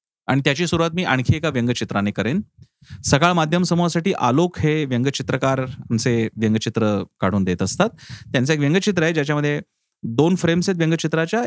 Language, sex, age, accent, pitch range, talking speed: Marathi, male, 30-49, native, 125-170 Hz, 145 wpm